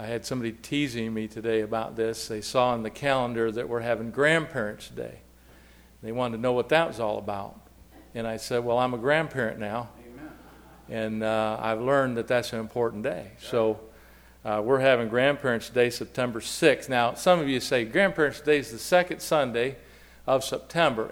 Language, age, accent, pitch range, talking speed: English, 50-69, American, 115-130 Hz, 185 wpm